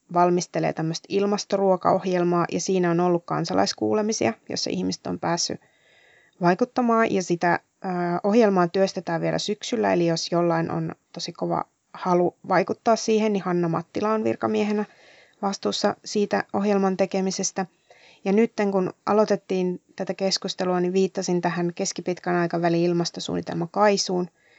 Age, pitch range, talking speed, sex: 20-39, 175-195 Hz, 120 wpm, female